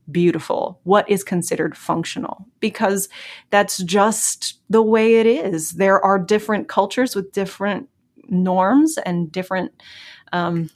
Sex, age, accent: female, 30-49, American